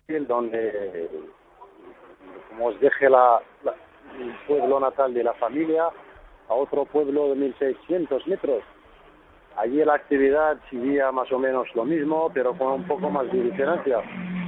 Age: 40-59